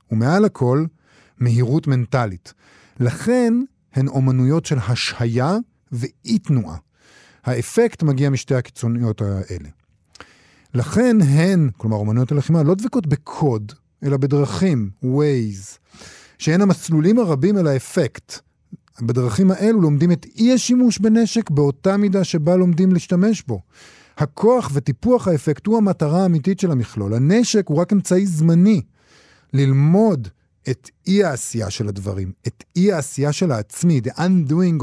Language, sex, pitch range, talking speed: Hebrew, male, 115-175 Hz, 120 wpm